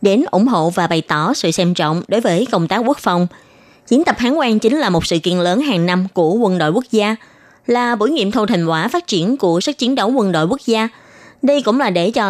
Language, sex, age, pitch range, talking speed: Vietnamese, female, 20-39, 185-255 Hz, 260 wpm